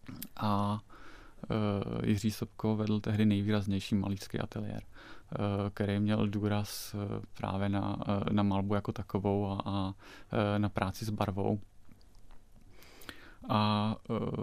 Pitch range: 105-115 Hz